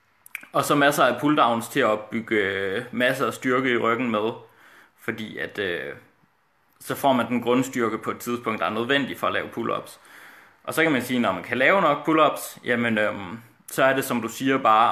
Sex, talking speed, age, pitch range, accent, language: male, 210 wpm, 20-39, 115-135 Hz, native, Danish